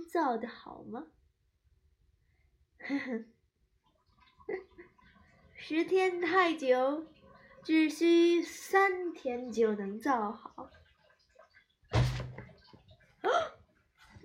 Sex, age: female, 20-39